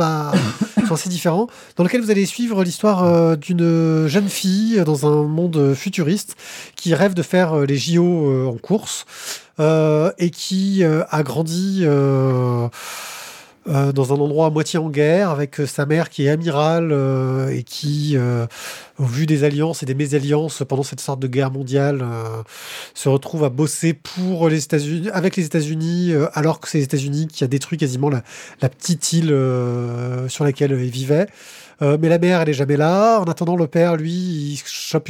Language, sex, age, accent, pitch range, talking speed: French, male, 20-39, French, 140-175 Hz, 190 wpm